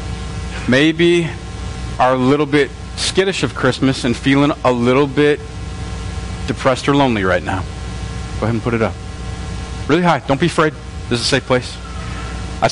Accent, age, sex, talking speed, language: American, 40-59, male, 165 wpm, English